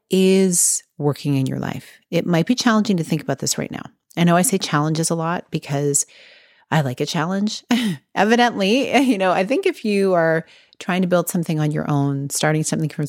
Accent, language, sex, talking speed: American, English, female, 205 wpm